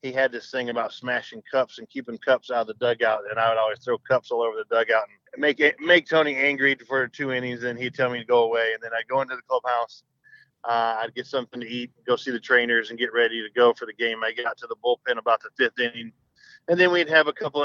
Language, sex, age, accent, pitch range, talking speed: English, male, 40-59, American, 120-140 Hz, 270 wpm